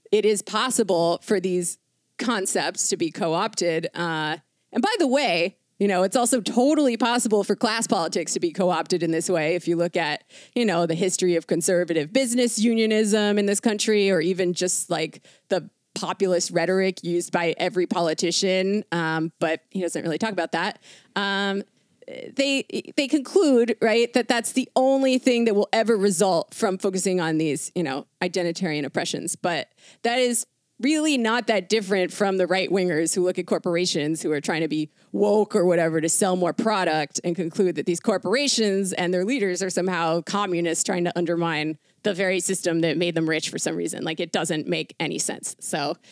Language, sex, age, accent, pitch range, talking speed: English, female, 30-49, American, 170-220 Hz, 185 wpm